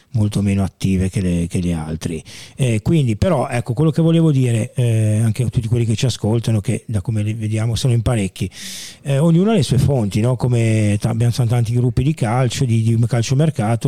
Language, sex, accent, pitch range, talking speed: Italian, male, native, 115-130 Hz, 210 wpm